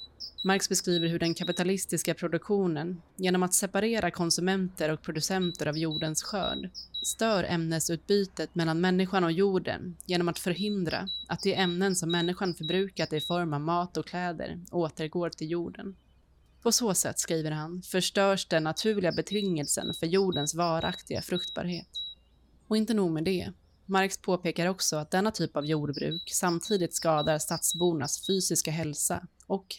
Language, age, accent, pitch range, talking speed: Swedish, 20-39, native, 160-190 Hz, 145 wpm